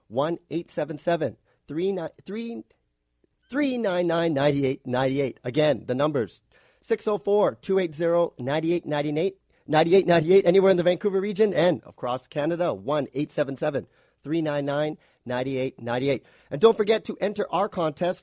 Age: 40-59